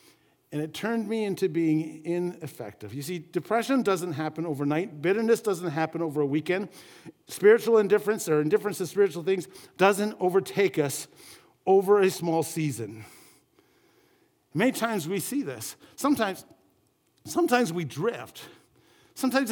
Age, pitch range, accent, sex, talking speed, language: 50-69, 160-230 Hz, American, male, 130 wpm, English